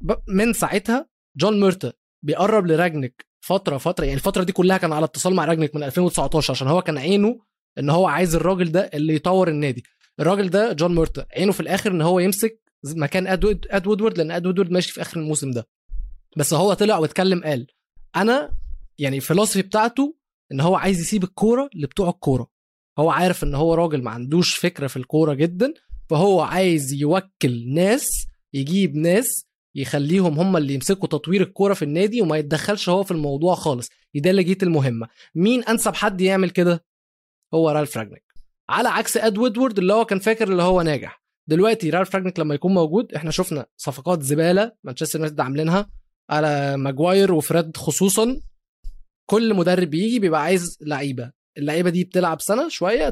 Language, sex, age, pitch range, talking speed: Arabic, male, 20-39, 150-195 Hz, 165 wpm